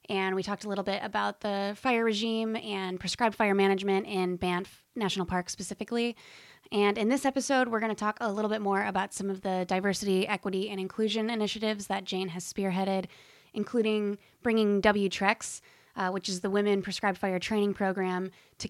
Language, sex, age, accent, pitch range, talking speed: English, female, 20-39, American, 185-215 Hz, 185 wpm